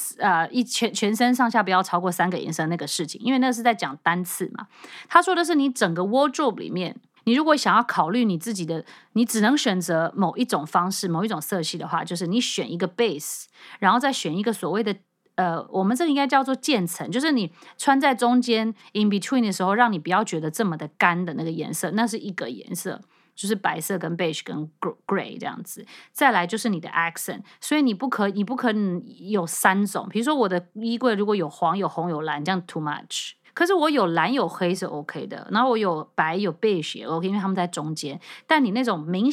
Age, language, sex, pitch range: 30-49, Chinese, female, 175-235 Hz